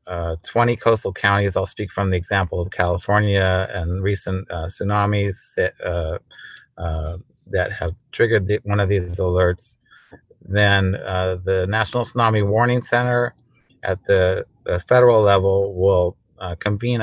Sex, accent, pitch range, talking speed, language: male, American, 90-105 Hz, 135 wpm, English